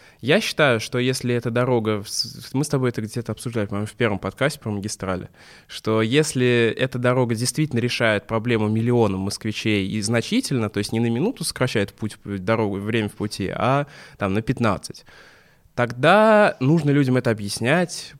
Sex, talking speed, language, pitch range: male, 160 wpm, Russian, 110-140 Hz